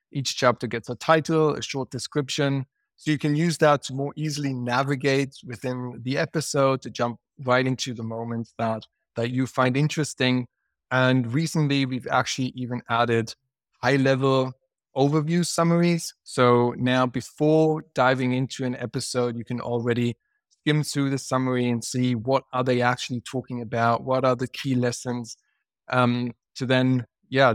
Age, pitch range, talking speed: 20-39, 120-135 Hz, 155 wpm